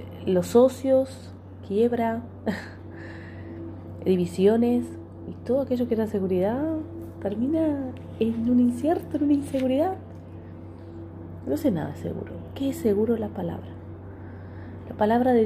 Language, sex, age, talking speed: Spanish, female, 30-49, 115 wpm